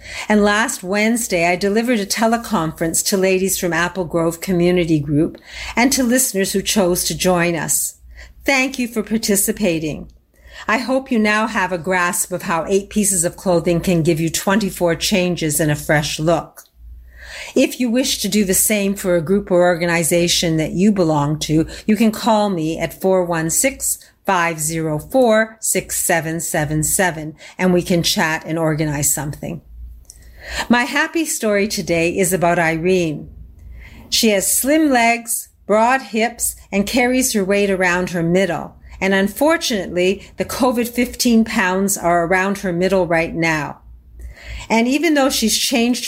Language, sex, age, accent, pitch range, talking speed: English, female, 50-69, American, 165-215 Hz, 145 wpm